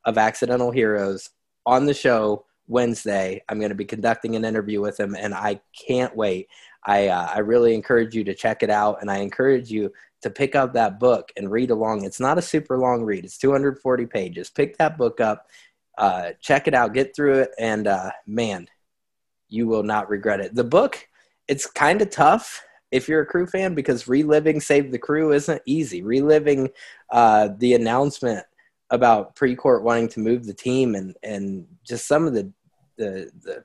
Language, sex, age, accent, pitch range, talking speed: English, male, 20-39, American, 110-145 Hz, 185 wpm